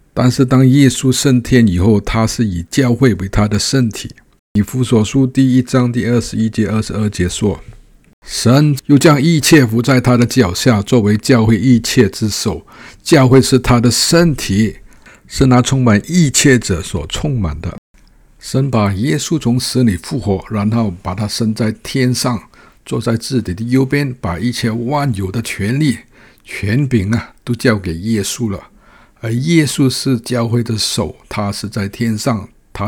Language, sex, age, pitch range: Chinese, male, 60-79, 100-125 Hz